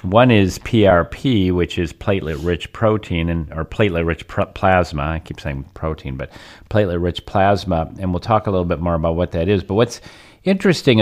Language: English